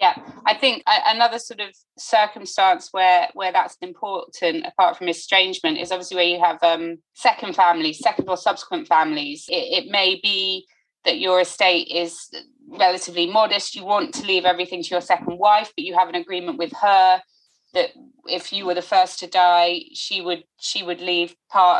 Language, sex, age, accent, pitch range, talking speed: English, female, 20-39, British, 175-225 Hz, 180 wpm